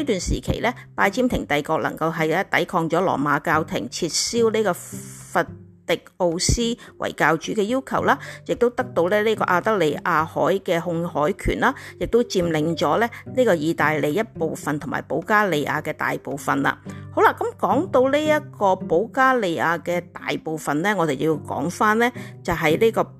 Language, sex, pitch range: Chinese, female, 155-225 Hz